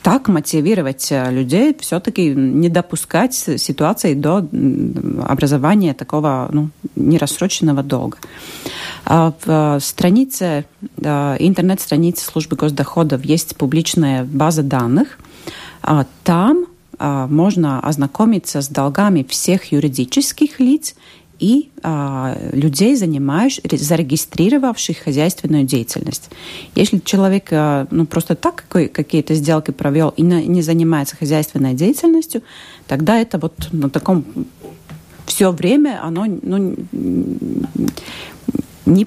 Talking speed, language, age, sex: 90 wpm, Russian, 30-49, female